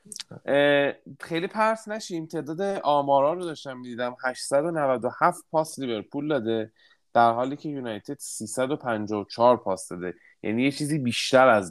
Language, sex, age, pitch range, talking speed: Persian, male, 30-49, 105-150 Hz, 125 wpm